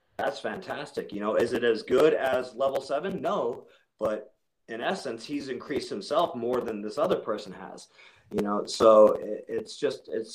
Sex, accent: male, American